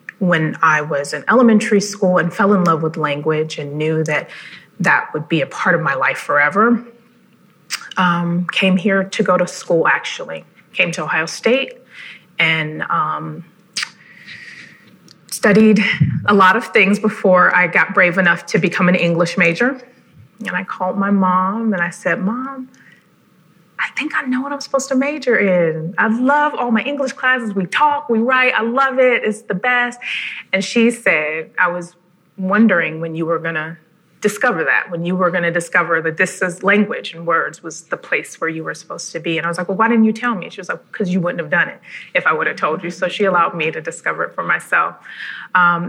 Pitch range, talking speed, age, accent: 165-215 Hz, 205 wpm, 30-49, American